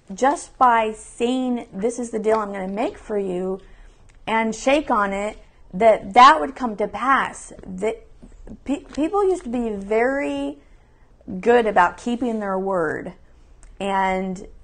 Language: English